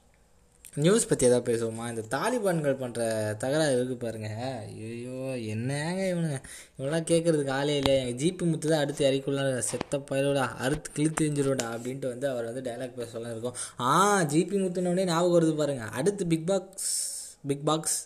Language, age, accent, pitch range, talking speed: Tamil, 20-39, native, 130-175 Hz, 145 wpm